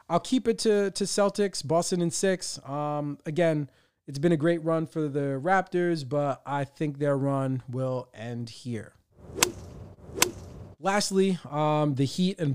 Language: English